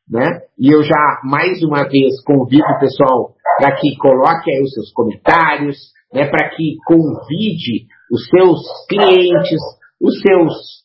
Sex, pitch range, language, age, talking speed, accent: male, 145-185 Hz, Portuguese, 50-69, 145 wpm, Brazilian